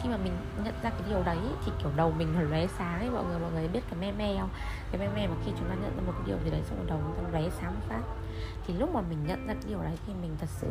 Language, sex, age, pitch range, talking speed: Vietnamese, female, 20-39, 80-105 Hz, 320 wpm